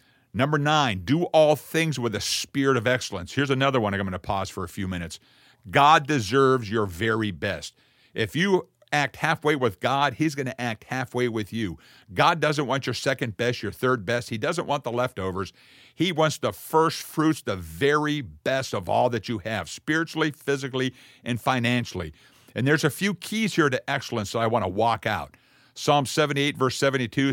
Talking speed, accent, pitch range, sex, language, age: 185 wpm, American, 115-150 Hz, male, English, 50-69